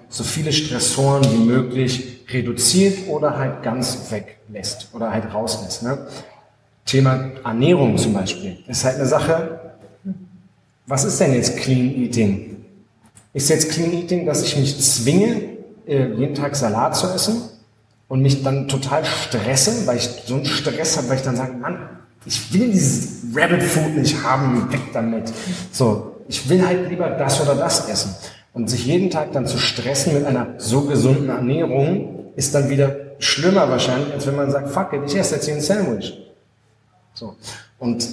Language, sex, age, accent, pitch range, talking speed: German, male, 30-49, German, 115-145 Hz, 170 wpm